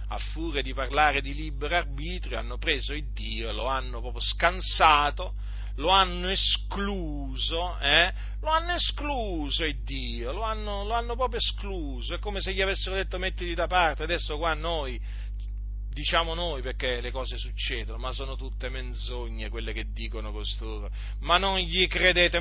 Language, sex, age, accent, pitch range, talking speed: Italian, male, 40-59, native, 115-170 Hz, 160 wpm